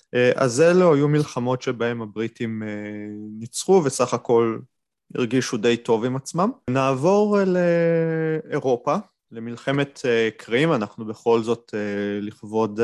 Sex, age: male, 20-39